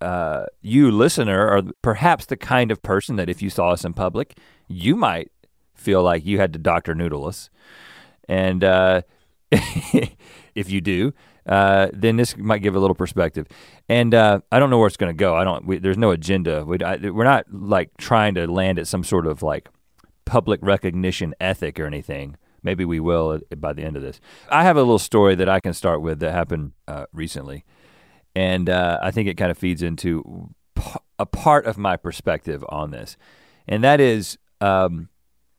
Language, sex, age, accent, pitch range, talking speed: English, male, 40-59, American, 85-115 Hz, 185 wpm